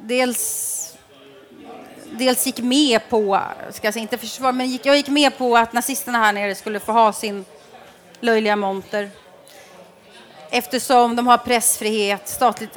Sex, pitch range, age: female, 205-245 Hz, 30-49